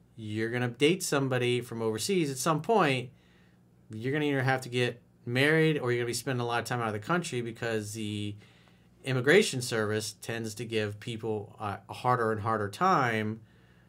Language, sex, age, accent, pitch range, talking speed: English, male, 40-59, American, 105-140 Hz, 195 wpm